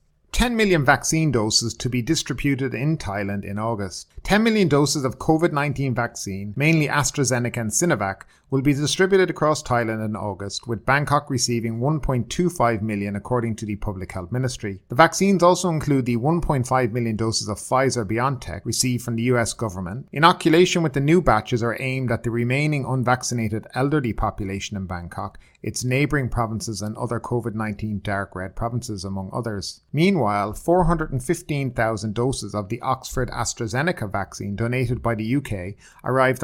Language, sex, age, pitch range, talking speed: English, male, 30-49, 105-140 Hz, 150 wpm